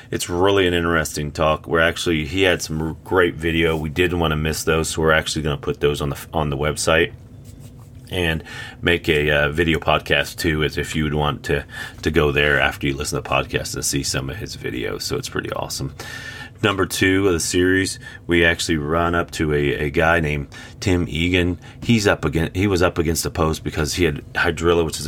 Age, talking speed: 30-49, 225 wpm